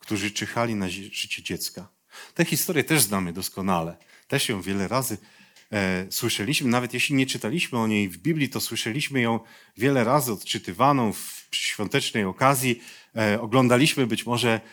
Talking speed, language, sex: 145 wpm, Polish, male